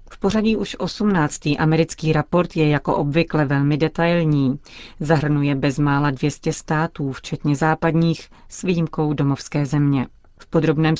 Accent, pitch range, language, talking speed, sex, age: native, 150-165 Hz, Czech, 125 wpm, female, 30-49